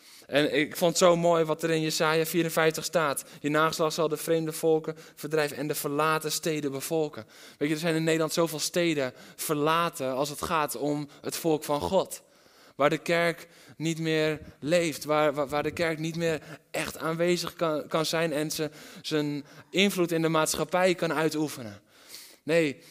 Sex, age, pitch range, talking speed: male, 20-39, 135-160 Hz, 175 wpm